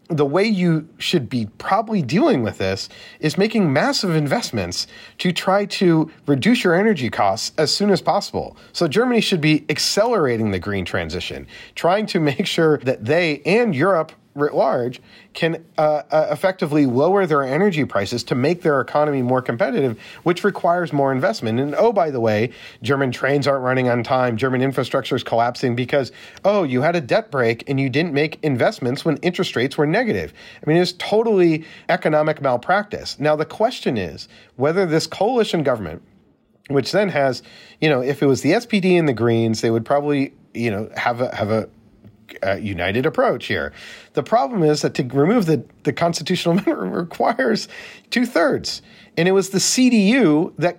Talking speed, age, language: 175 wpm, 40-59, English